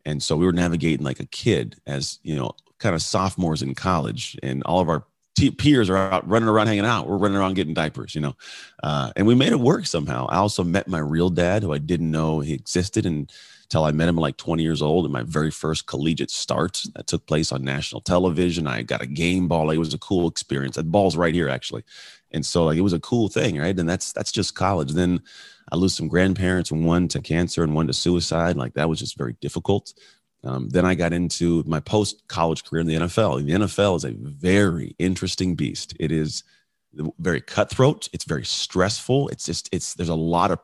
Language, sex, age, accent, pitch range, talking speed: English, male, 30-49, American, 80-95 Hz, 230 wpm